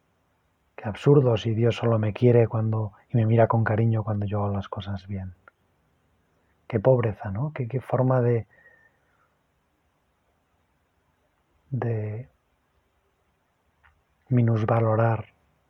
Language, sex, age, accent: Spanish, male, 30-49, Spanish